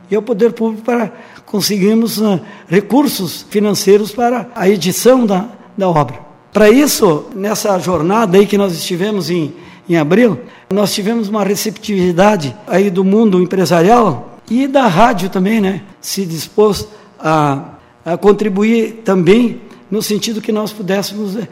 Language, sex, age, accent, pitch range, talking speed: Portuguese, male, 60-79, Brazilian, 185-225 Hz, 135 wpm